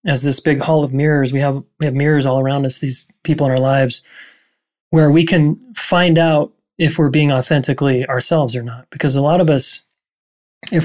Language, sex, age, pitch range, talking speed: English, male, 20-39, 140-160 Hz, 205 wpm